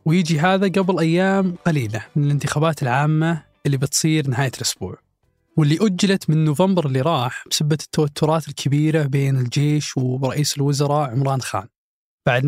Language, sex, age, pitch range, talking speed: Arabic, male, 20-39, 140-165 Hz, 135 wpm